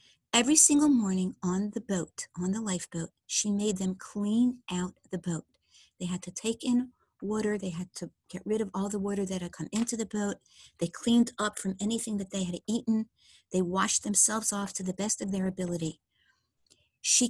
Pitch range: 180-220 Hz